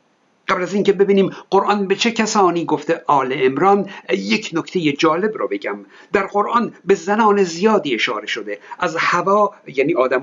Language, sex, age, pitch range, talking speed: Persian, male, 50-69, 160-205 Hz, 160 wpm